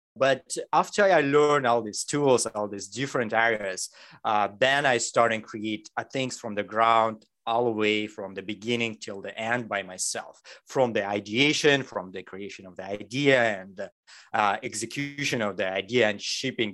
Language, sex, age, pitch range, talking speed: English, male, 30-49, 105-140 Hz, 180 wpm